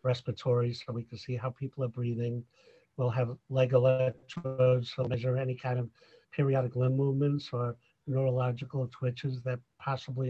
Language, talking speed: English, 155 wpm